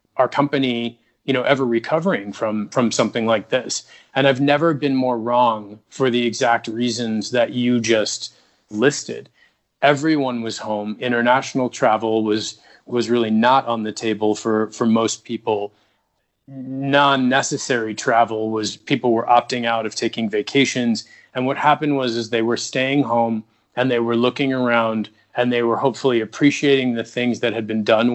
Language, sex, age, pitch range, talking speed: English, male, 30-49, 115-130 Hz, 160 wpm